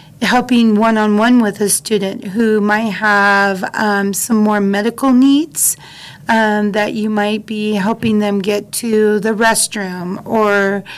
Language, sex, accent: English, female, American